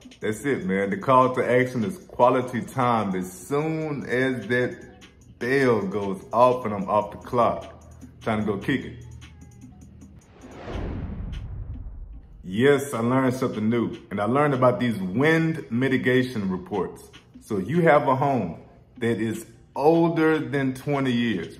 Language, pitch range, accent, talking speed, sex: English, 110-135 Hz, American, 140 wpm, male